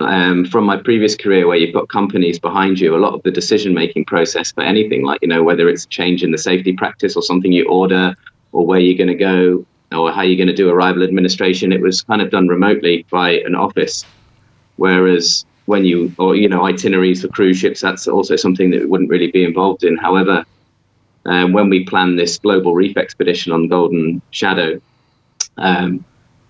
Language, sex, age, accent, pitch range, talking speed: English, male, 20-39, British, 90-95 Hz, 205 wpm